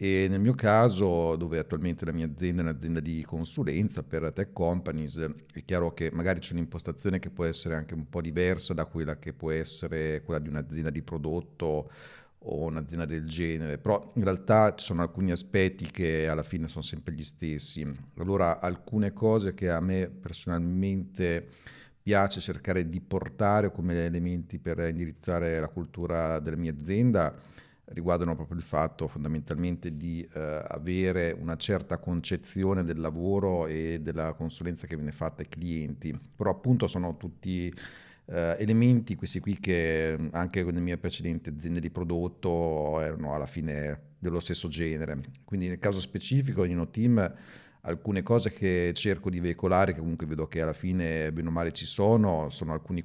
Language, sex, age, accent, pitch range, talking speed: Italian, male, 40-59, native, 80-90 Hz, 165 wpm